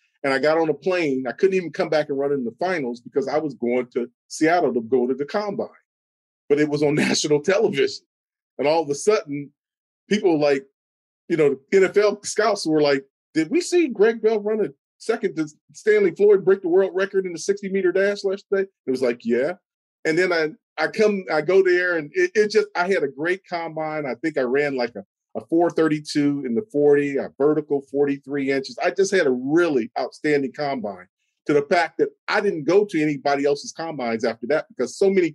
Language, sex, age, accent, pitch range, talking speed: English, male, 40-59, American, 145-205 Hz, 215 wpm